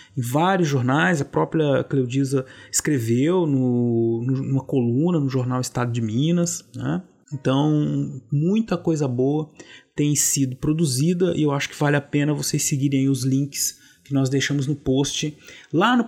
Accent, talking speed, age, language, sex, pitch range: Brazilian, 155 wpm, 30-49, Portuguese, male, 130-165 Hz